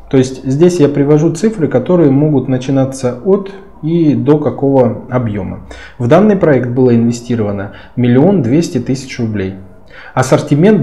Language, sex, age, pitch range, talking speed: Russian, male, 20-39, 115-150 Hz, 135 wpm